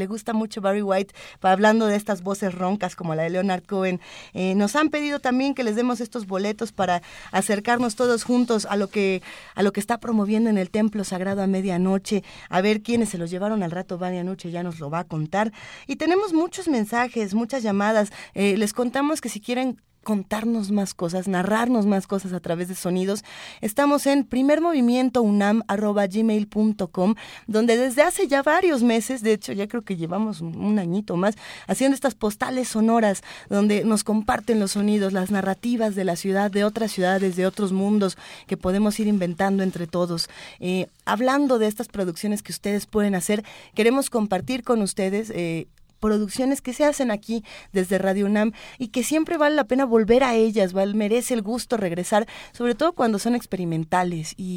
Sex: female